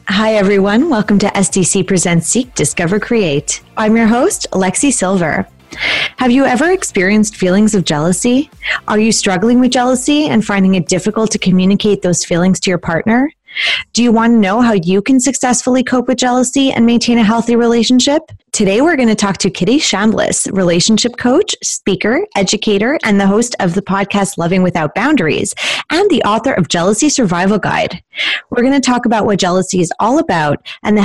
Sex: female